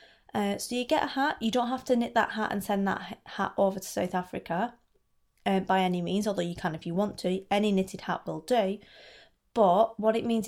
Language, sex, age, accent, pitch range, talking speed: English, female, 20-39, British, 190-230 Hz, 235 wpm